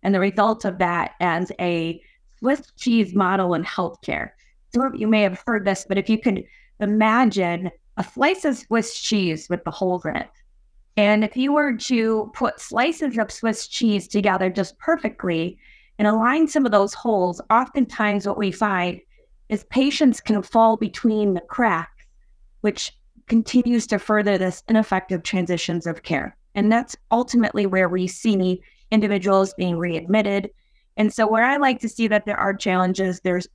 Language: English